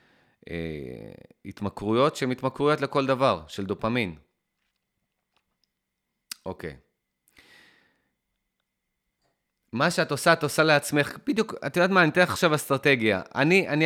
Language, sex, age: Hebrew, male, 30-49